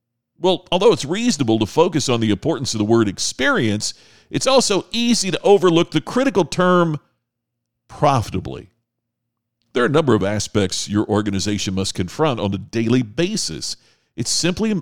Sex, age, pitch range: male, 50-69, 105-150 Hz